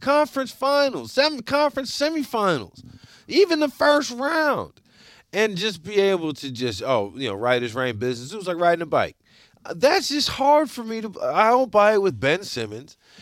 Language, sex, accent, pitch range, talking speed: English, male, American, 150-250 Hz, 185 wpm